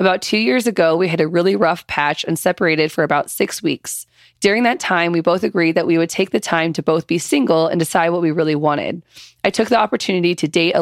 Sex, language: female, English